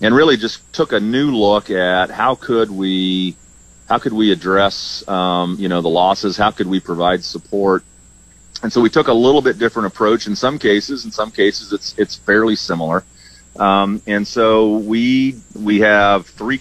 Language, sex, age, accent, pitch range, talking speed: English, male, 40-59, American, 95-110 Hz, 185 wpm